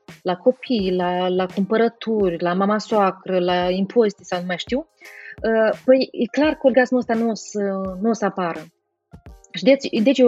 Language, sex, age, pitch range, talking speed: Romanian, female, 30-49, 195-250 Hz, 175 wpm